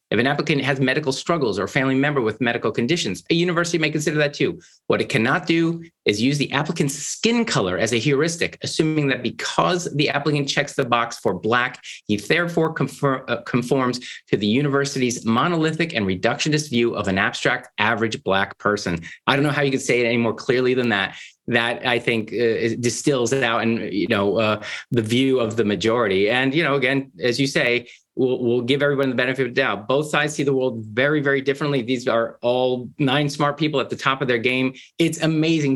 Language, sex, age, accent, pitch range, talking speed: English, male, 30-49, American, 115-145 Hz, 215 wpm